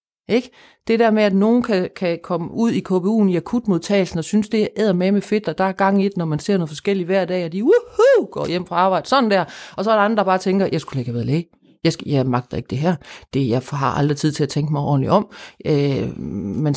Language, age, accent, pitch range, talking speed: Danish, 30-49, native, 165-220 Hz, 275 wpm